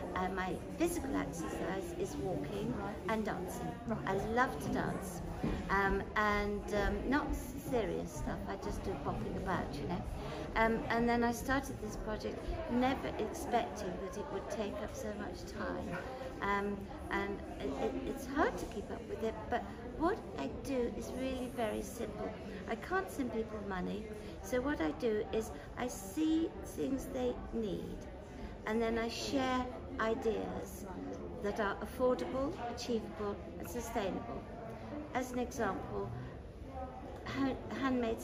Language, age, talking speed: English, 50-69, 140 wpm